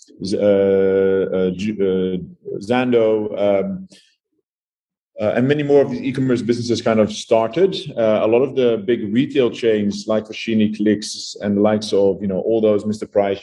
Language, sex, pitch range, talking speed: English, male, 105-125 Hz, 165 wpm